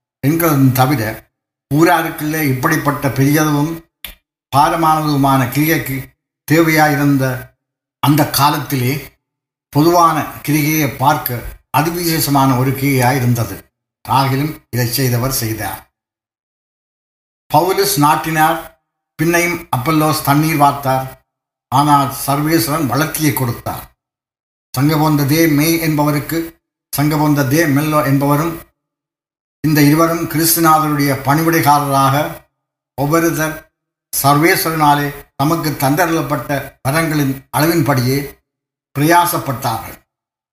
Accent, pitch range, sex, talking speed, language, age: native, 135-155 Hz, male, 70 wpm, Tamil, 60-79